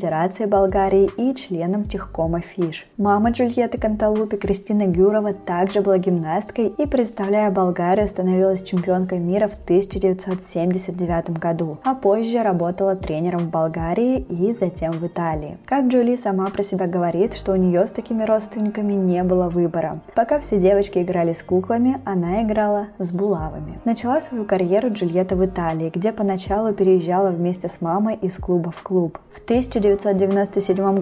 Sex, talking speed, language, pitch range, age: female, 145 wpm, Russian, 180-210 Hz, 20-39